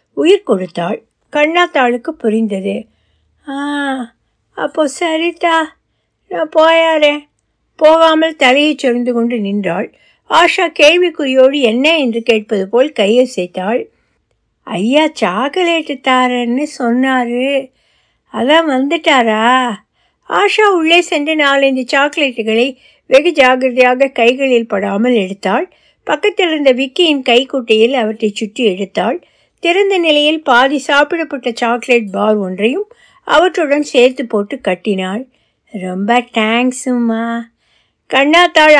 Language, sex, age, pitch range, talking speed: Tamil, female, 60-79, 230-310 Hz, 80 wpm